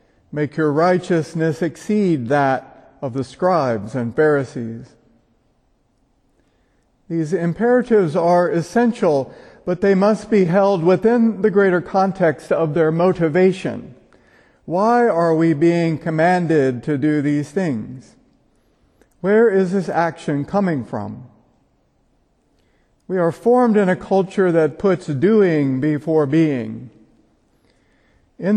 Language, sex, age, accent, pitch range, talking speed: English, male, 50-69, American, 145-185 Hz, 110 wpm